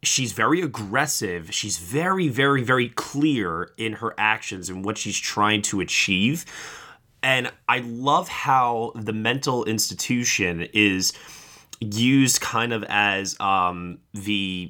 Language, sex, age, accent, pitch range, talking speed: English, male, 20-39, American, 95-115 Hz, 125 wpm